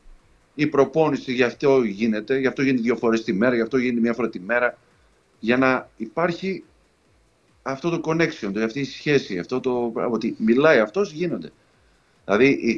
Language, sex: Greek, male